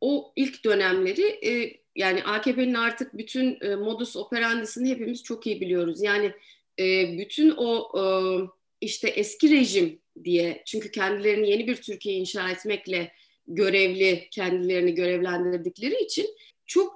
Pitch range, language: 205-335 Hz, Turkish